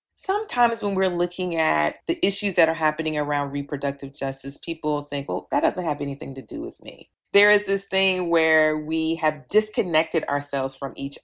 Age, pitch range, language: 40-59, 140-165 Hz, English